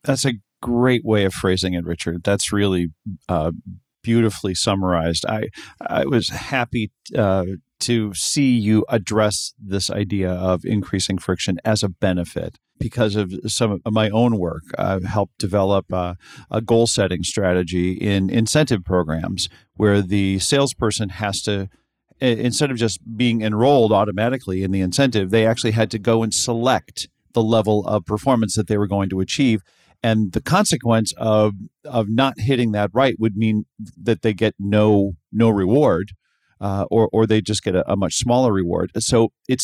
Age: 40-59